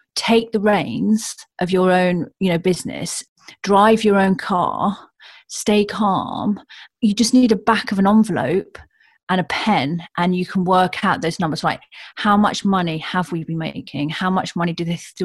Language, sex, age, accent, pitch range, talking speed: English, female, 40-59, British, 165-205 Hz, 180 wpm